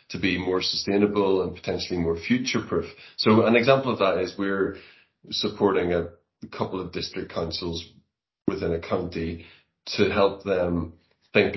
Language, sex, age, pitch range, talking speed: English, male, 30-49, 85-100 Hz, 150 wpm